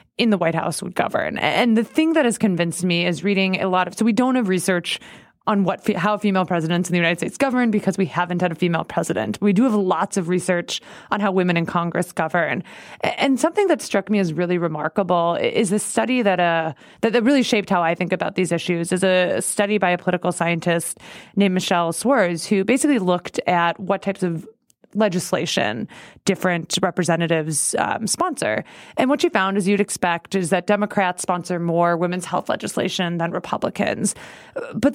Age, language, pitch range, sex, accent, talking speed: 20-39, English, 175-215 Hz, female, American, 195 wpm